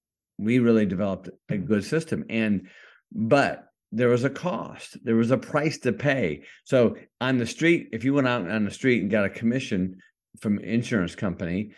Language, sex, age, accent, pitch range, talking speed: English, male, 50-69, American, 95-125 Hz, 190 wpm